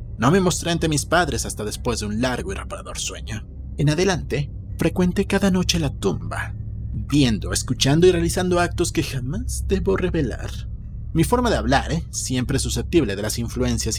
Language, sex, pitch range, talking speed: Spanish, male, 110-145 Hz, 170 wpm